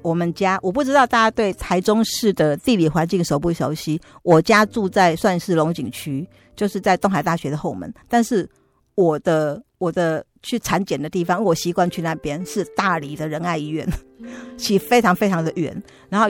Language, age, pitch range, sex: Chinese, 50-69, 160-205 Hz, female